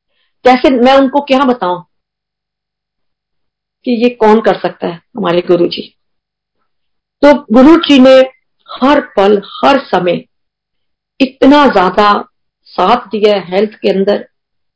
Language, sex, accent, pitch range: Hindi, female, native, 185-250 Hz